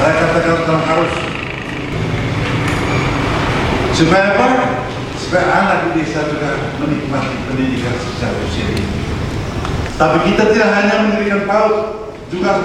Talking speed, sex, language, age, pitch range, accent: 100 wpm, male, Indonesian, 50-69, 145-200 Hz, native